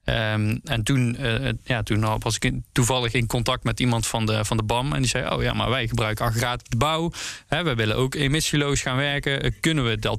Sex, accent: male, Dutch